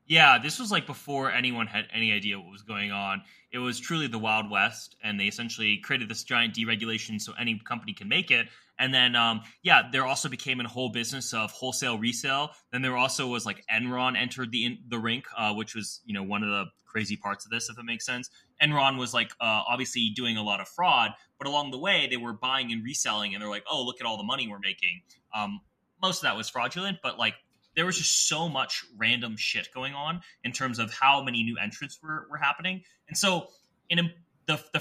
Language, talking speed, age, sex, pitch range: English, 235 wpm, 20-39, male, 110-145 Hz